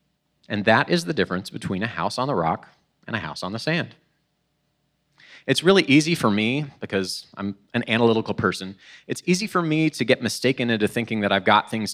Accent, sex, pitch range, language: American, male, 100-145 Hz, English